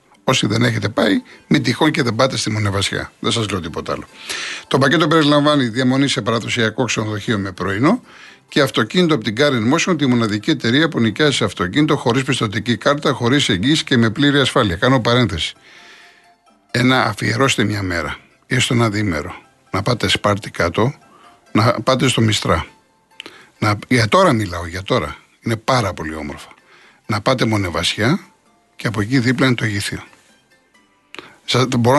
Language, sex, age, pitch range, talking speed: Greek, male, 60-79, 110-145 Hz, 160 wpm